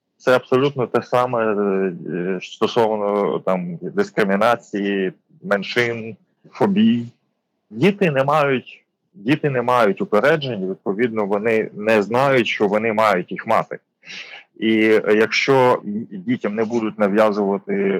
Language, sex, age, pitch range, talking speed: Ukrainian, male, 20-39, 105-130 Hz, 95 wpm